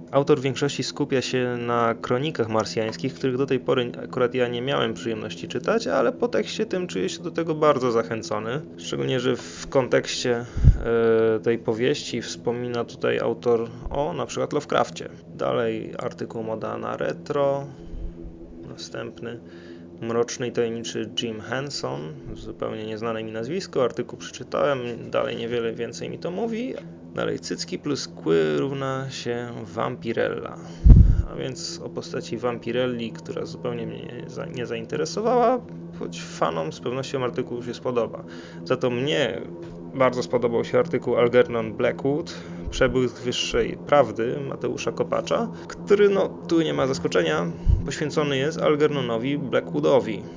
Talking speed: 130 wpm